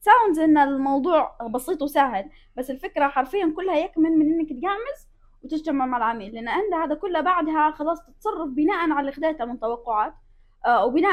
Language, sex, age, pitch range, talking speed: Arabic, female, 20-39, 245-320 Hz, 145 wpm